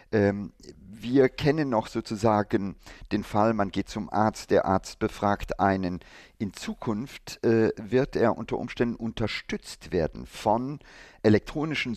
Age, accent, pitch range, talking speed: 50-69, German, 95-120 Hz, 125 wpm